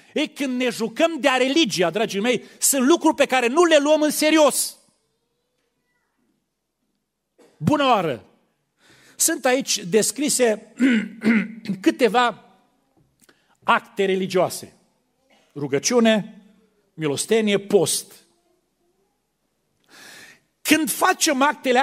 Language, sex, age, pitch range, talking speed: Romanian, male, 40-59, 190-280 Hz, 90 wpm